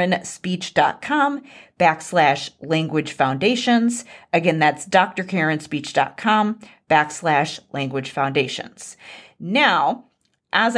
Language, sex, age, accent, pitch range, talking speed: English, female, 30-49, American, 165-230 Hz, 65 wpm